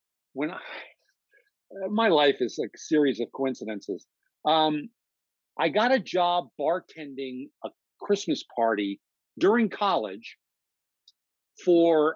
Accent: American